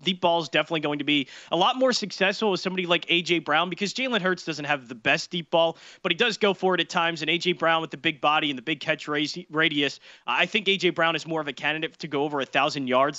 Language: English